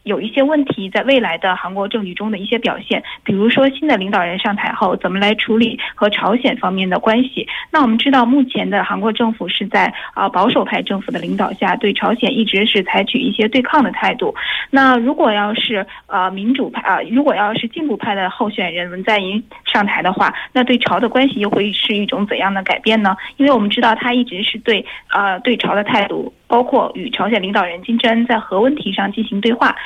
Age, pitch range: 10-29, 200-255 Hz